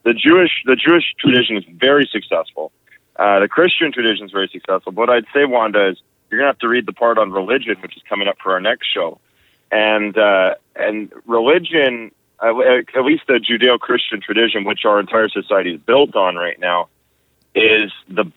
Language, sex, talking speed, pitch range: English, male, 195 wpm, 105-125 Hz